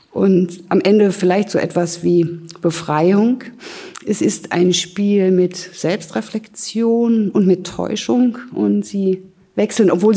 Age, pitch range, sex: 50-69, 170-210 Hz, female